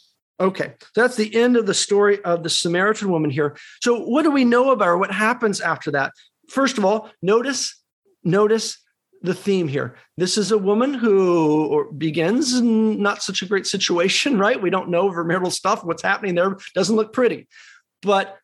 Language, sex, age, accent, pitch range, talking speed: English, male, 40-59, American, 175-265 Hz, 190 wpm